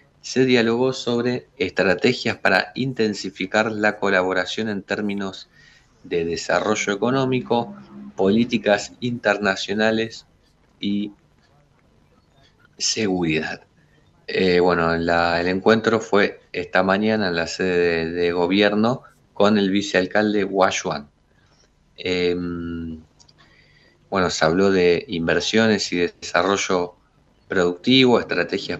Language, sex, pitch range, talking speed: Spanish, male, 90-110 Hz, 95 wpm